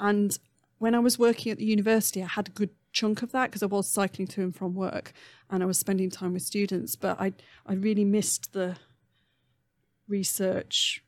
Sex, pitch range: female, 180-210 Hz